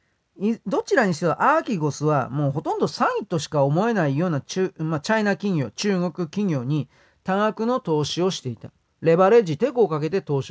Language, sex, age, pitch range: Japanese, male, 40-59, 140-185 Hz